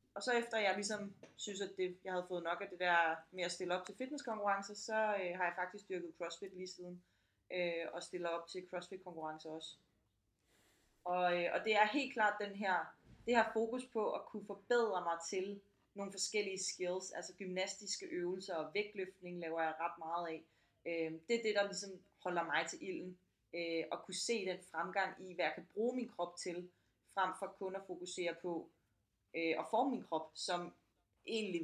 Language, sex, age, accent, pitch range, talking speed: Danish, female, 20-39, native, 160-195 Hz, 185 wpm